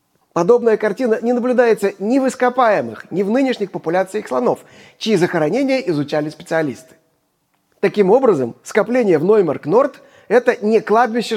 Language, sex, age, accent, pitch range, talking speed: Russian, male, 30-49, native, 180-245 Hz, 125 wpm